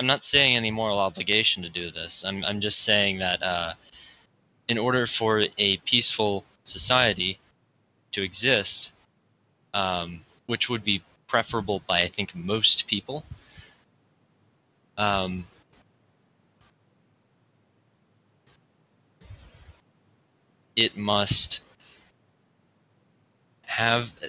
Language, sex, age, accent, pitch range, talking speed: English, male, 20-39, American, 95-115 Hz, 90 wpm